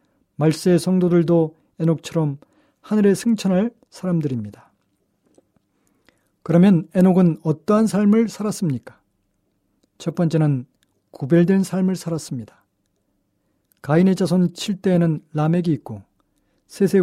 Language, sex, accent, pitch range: Korean, male, native, 135-185 Hz